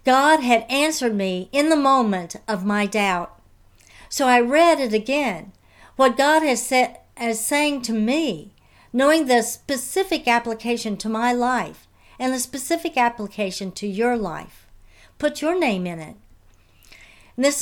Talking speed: 145 wpm